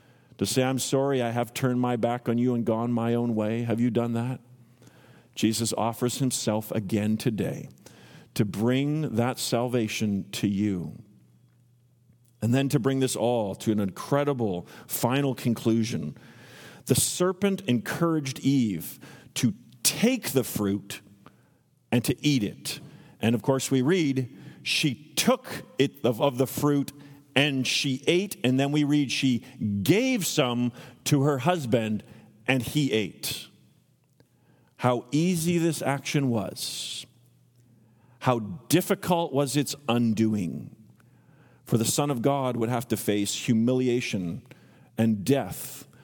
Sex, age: male, 50-69